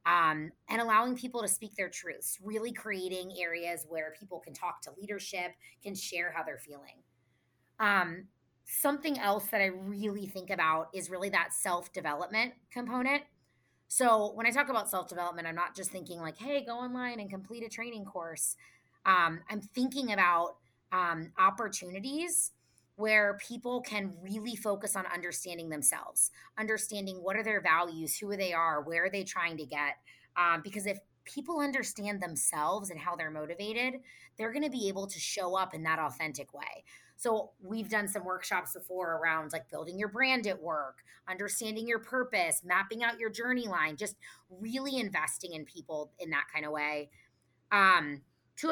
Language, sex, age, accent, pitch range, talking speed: English, female, 20-39, American, 170-220 Hz, 165 wpm